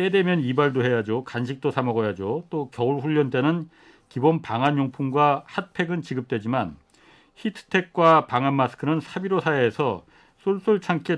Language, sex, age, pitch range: Korean, male, 40-59, 130-175 Hz